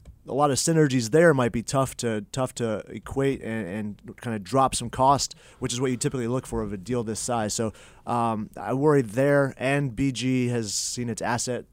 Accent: American